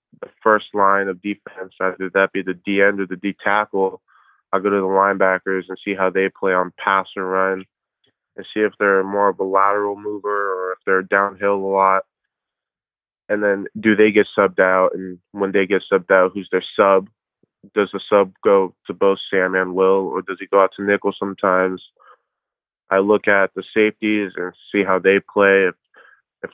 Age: 20-39